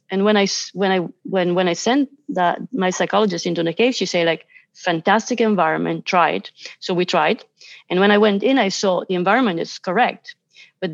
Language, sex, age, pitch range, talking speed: English, female, 30-49, 170-205 Hz, 205 wpm